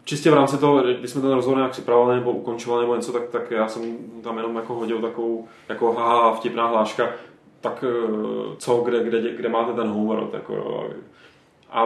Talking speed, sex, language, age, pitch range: 180 wpm, male, Czech, 20-39, 115-135 Hz